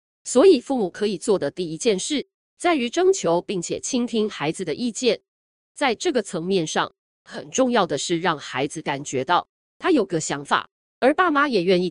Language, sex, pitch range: Chinese, female, 160-245 Hz